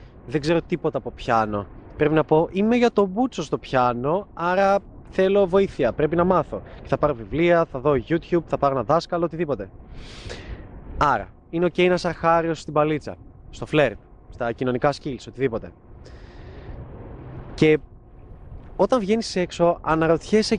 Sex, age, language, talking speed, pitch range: male, 20-39, Greek, 150 wpm, 130-165 Hz